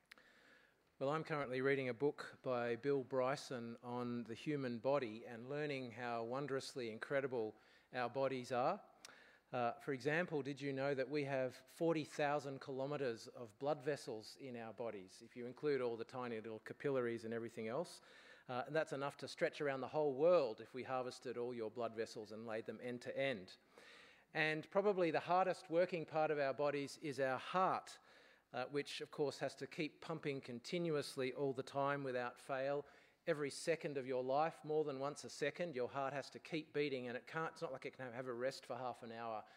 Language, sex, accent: English, male, Australian